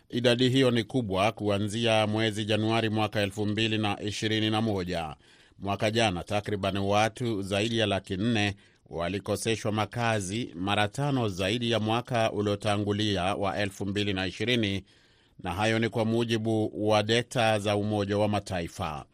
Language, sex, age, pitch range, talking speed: Swahili, male, 30-49, 100-115 Hz, 120 wpm